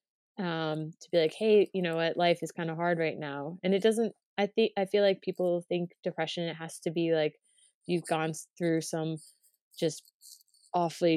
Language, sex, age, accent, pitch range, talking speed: English, female, 20-39, American, 160-175 Hz, 200 wpm